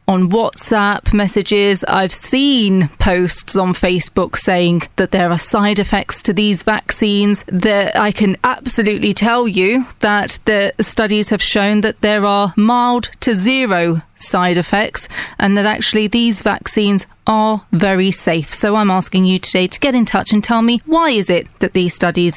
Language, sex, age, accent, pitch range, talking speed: English, female, 30-49, British, 195-225 Hz, 165 wpm